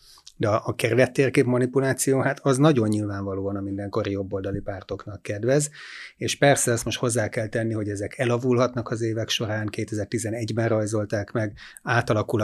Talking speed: 150 wpm